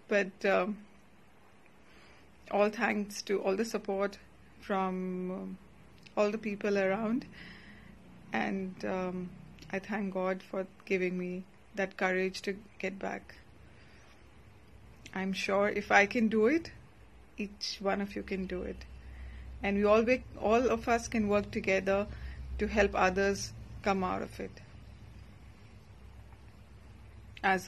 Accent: Indian